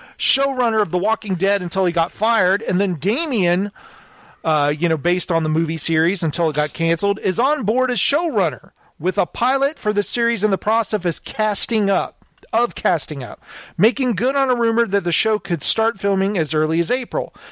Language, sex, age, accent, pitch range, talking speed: English, male, 40-59, American, 175-245 Hz, 200 wpm